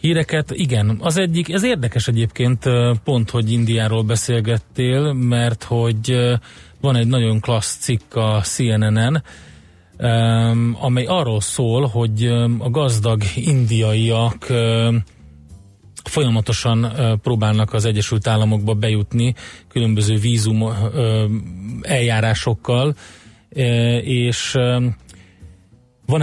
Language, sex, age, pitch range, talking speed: Hungarian, male, 30-49, 110-125 Hz, 85 wpm